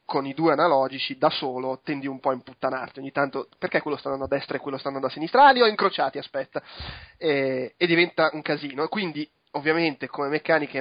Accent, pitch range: native, 135-170 Hz